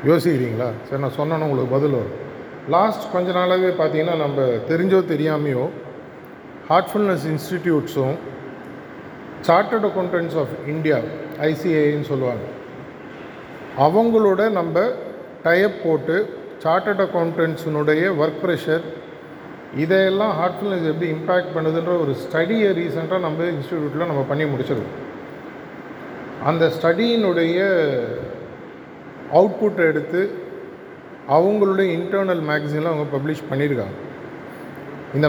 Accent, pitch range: native, 150-185 Hz